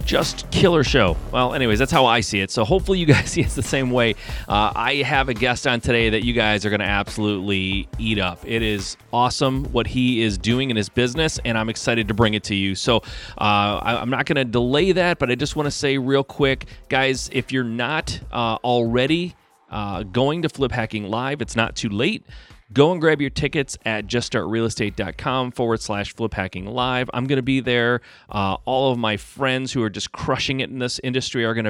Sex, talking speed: male, 220 wpm